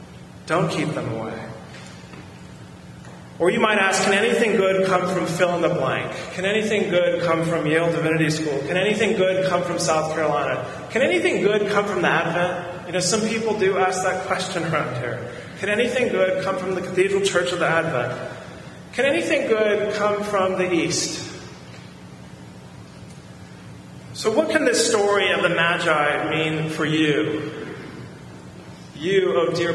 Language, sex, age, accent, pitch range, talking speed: English, male, 30-49, American, 155-195 Hz, 165 wpm